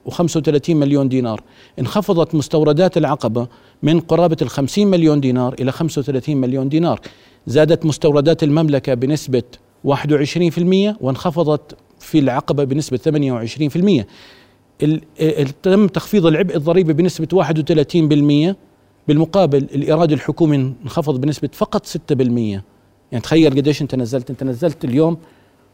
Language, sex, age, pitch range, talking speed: Arabic, male, 40-59, 125-160 Hz, 110 wpm